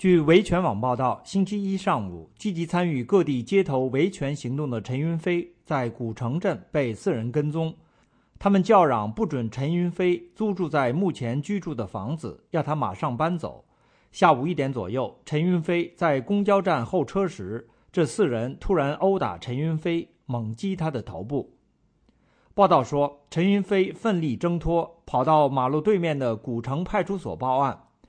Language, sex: English, male